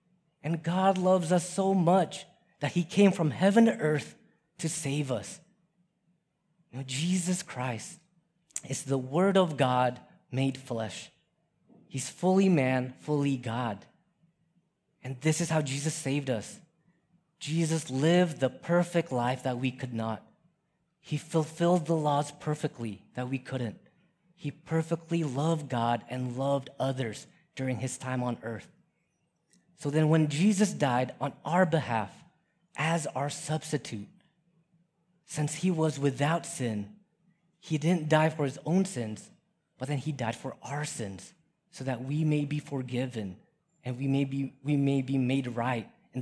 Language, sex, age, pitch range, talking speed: English, male, 30-49, 130-175 Hz, 145 wpm